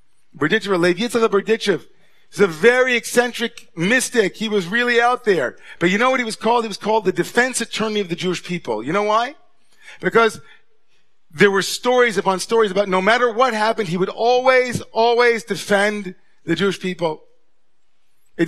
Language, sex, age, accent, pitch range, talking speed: English, male, 40-59, American, 180-235 Hz, 160 wpm